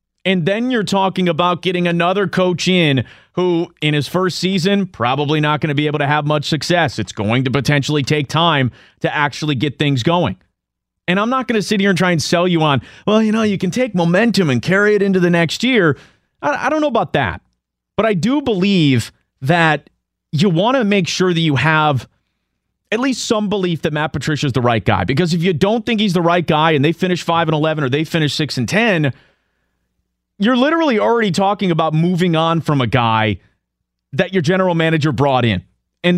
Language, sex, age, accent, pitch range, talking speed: English, male, 30-49, American, 135-185 Hz, 215 wpm